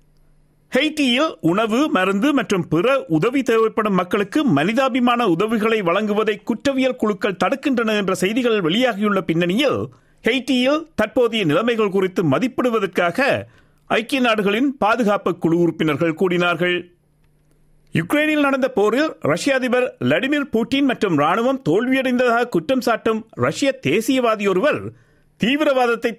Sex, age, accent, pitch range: male, 50-69, native, 175-260 Hz